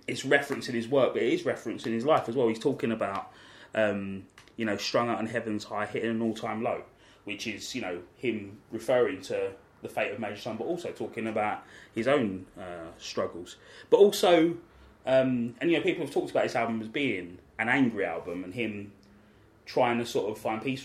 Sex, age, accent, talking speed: male, 20-39, British, 215 wpm